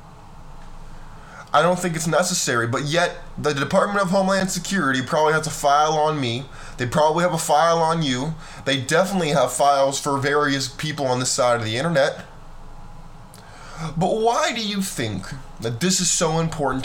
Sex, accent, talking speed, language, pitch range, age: male, American, 170 wpm, English, 130-165 Hz, 20-39